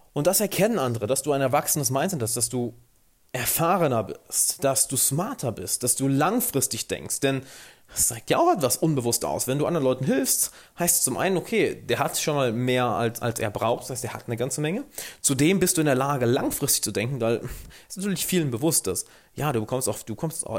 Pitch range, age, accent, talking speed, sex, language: 120-155 Hz, 30-49, German, 225 wpm, male, German